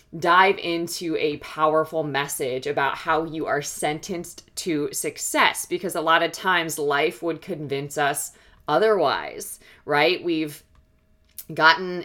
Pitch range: 145-175 Hz